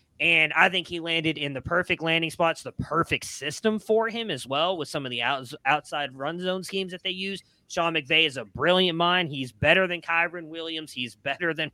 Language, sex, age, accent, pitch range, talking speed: English, male, 30-49, American, 140-180 Hz, 215 wpm